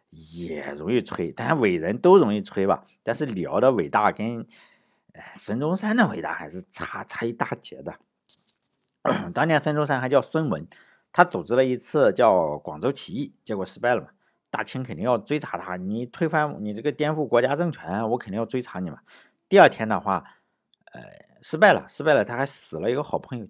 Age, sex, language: 50-69, male, Chinese